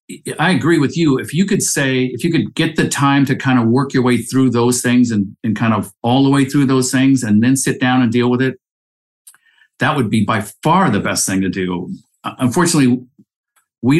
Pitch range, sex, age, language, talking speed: 115-155 Hz, male, 50-69, English, 225 wpm